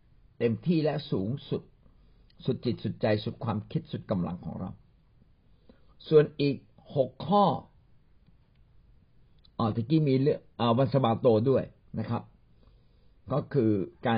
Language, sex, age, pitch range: Thai, male, 60-79, 105-140 Hz